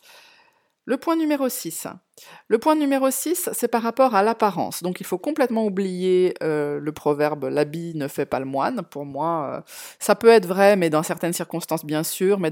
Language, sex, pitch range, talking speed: French, female, 165-230 Hz, 185 wpm